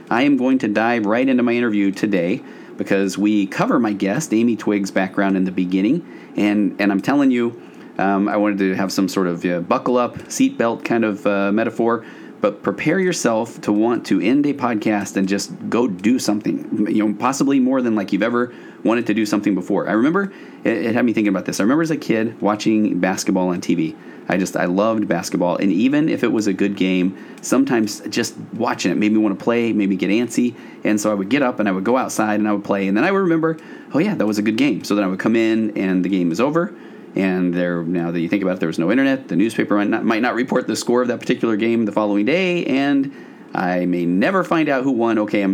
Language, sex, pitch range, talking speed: English, male, 95-120 Hz, 250 wpm